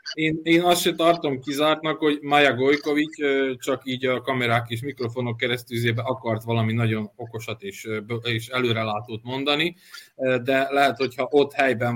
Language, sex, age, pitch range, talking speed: Hungarian, male, 20-39, 120-140 Hz, 145 wpm